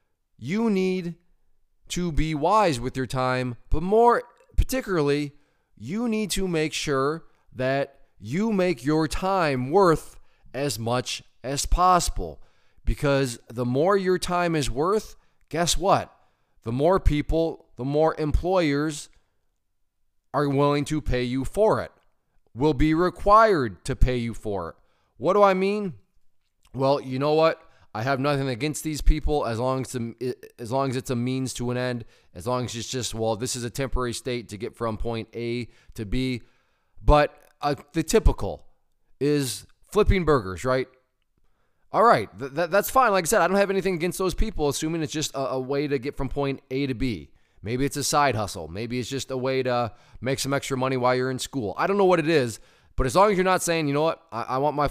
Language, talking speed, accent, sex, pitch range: English, 190 wpm, American, male, 120-160 Hz